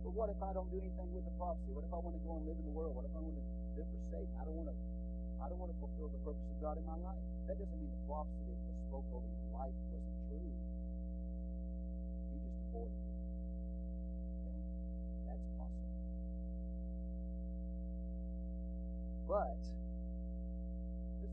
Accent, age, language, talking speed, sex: American, 40-59, English, 190 wpm, male